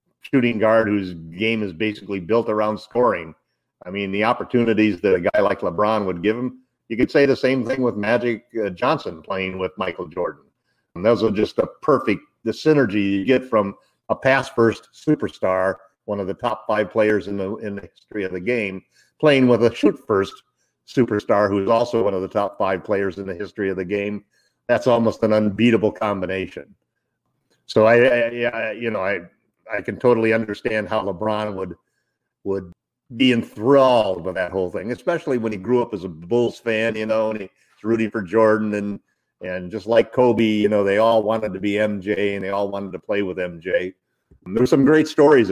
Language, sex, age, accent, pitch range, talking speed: English, male, 50-69, American, 100-120 Hz, 200 wpm